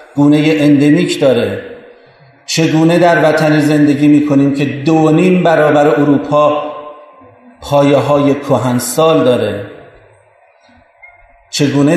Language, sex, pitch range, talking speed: Persian, male, 125-150 Hz, 95 wpm